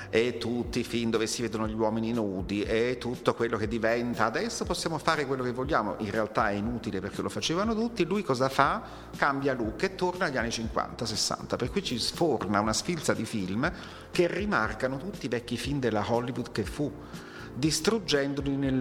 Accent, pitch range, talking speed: native, 105-145 Hz, 190 wpm